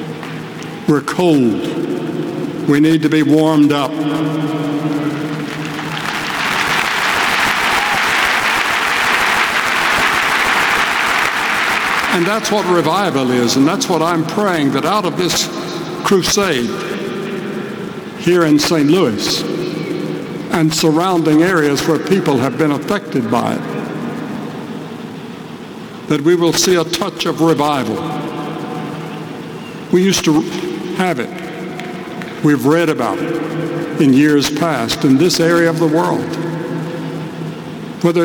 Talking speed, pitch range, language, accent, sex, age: 100 wpm, 155-195 Hz, English, American, male, 60-79